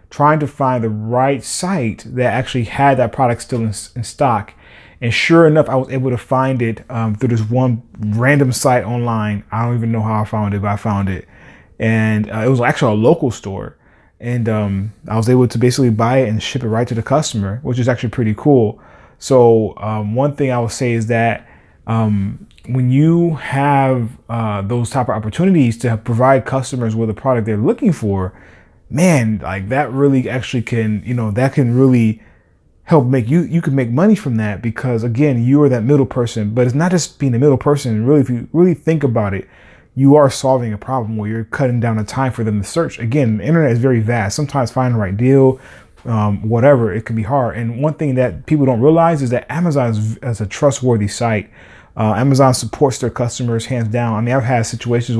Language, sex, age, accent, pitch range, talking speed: English, male, 20-39, American, 110-135 Hz, 220 wpm